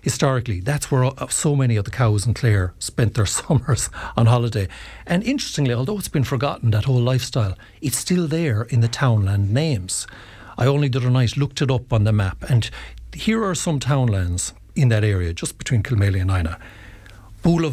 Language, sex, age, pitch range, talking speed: English, male, 60-79, 100-130 Hz, 190 wpm